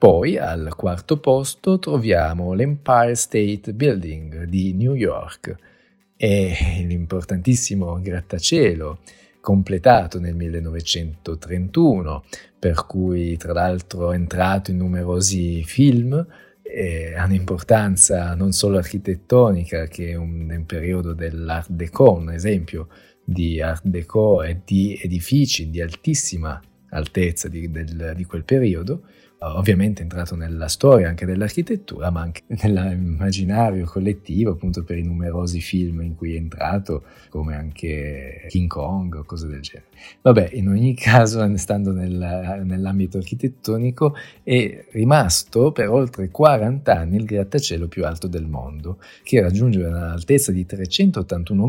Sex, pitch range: male, 85-105 Hz